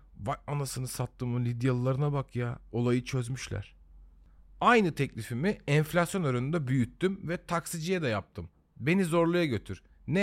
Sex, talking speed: male, 130 wpm